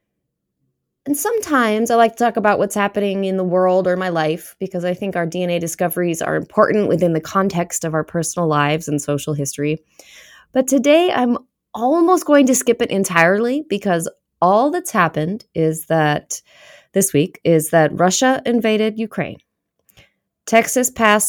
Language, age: English, 20-39